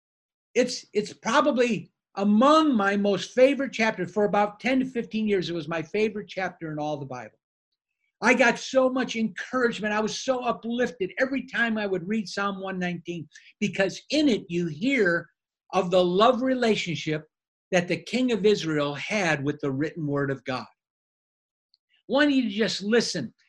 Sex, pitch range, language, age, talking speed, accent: male, 155-215 Hz, English, 50-69, 165 wpm, American